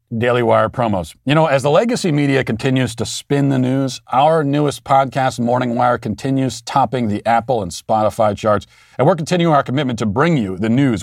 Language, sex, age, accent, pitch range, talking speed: English, male, 40-59, American, 105-135 Hz, 195 wpm